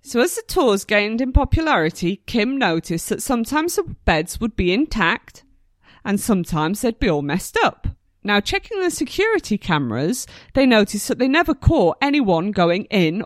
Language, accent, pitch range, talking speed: English, British, 170-265 Hz, 165 wpm